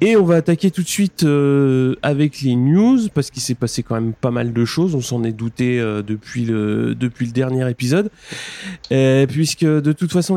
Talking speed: 215 wpm